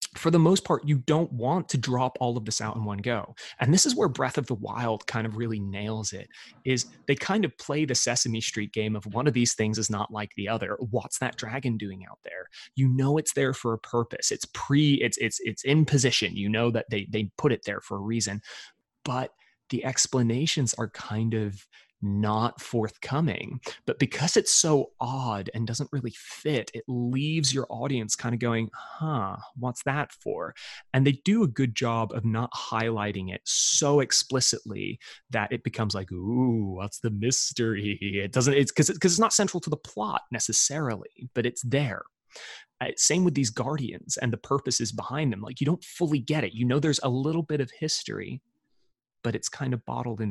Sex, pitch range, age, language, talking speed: male, 110-140 Hz, 20-39, English, 205 wpm